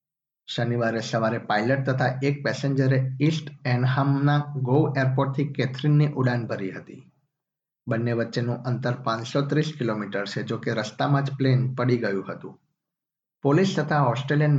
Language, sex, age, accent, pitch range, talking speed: Gujarati, male, 50-69, native, 125-140 Hz, 40 wpm